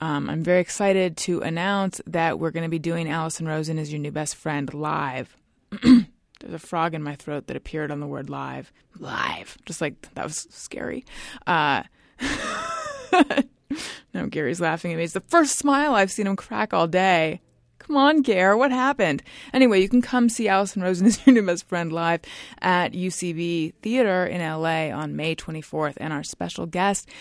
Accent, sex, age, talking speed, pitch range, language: American, female, 20-39, 185 wpm, 155-230 Hz, English